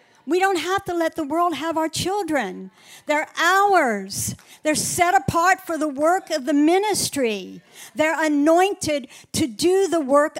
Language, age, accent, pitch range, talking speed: English, 60-79, American, 205-300 Hz, 155 wpm